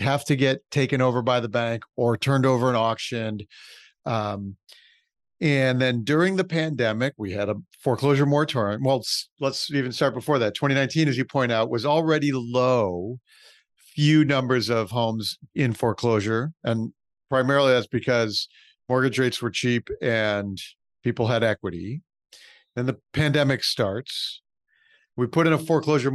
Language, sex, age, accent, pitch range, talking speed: English, male, 50-69, American, 115-150 Hz, 150 wpm